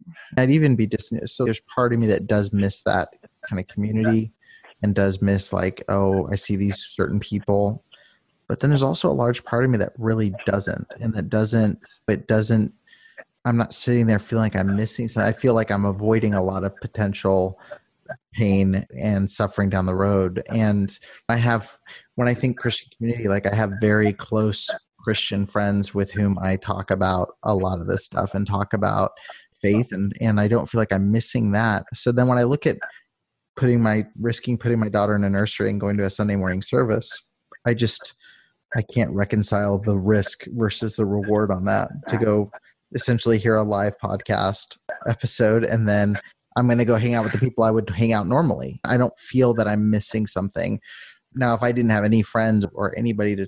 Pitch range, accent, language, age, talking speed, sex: 100-115 Hz, American, English, 30-49, 200 wpm, male